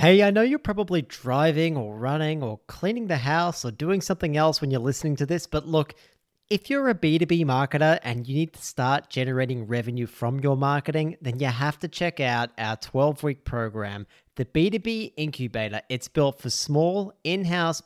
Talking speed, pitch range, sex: 185 wpm, 125-165 Hz, male